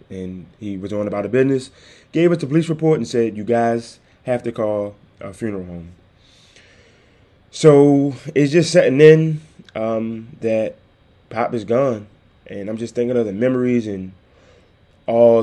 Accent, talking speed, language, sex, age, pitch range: American, 160 wpm, English, male, 20-39, 100-125 Hz